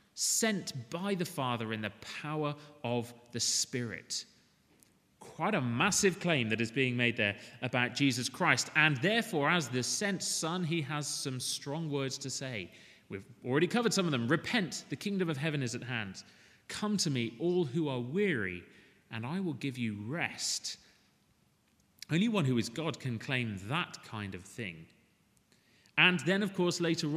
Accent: British